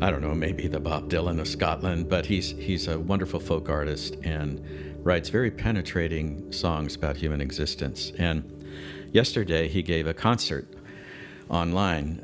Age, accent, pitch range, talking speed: 50-69, American, 75-90 Hz, 150 wpm